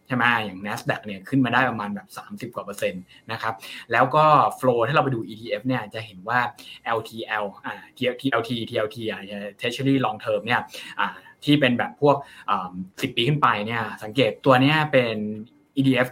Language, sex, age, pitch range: Thai, male, 20-39, 115-140 Hz